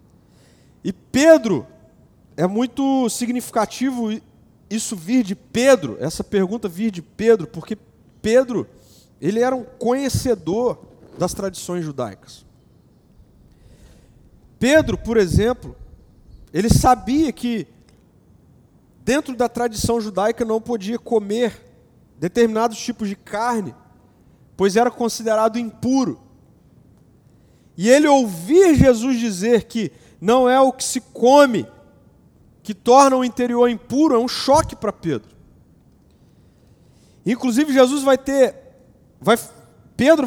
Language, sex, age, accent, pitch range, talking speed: Portuguese, male, 40-59, Brazilian, 220-255 Hz, 105 wpm